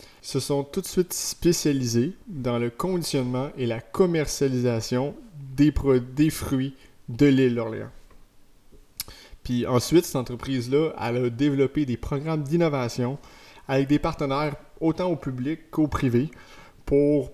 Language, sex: French, male